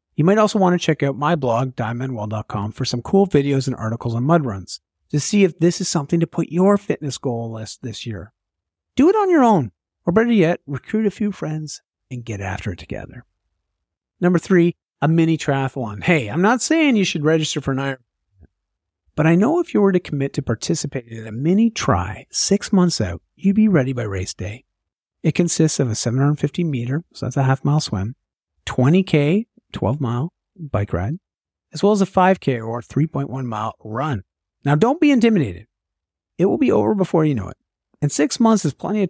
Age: 50-69